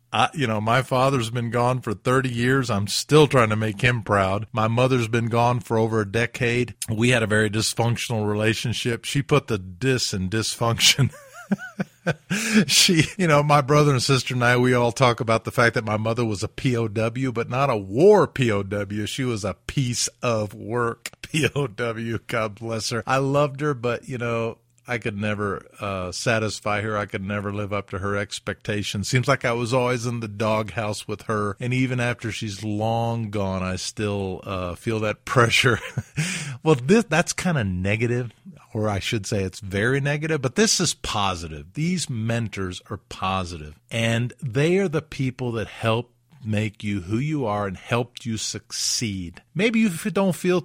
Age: 40-59